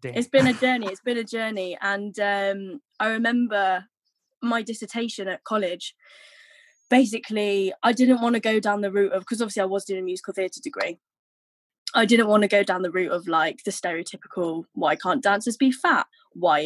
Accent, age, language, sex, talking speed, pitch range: British, 10-29, English, female, 190 wpm, 190-235 Hz